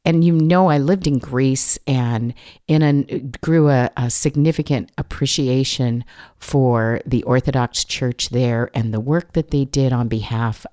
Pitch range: 120-145 Hz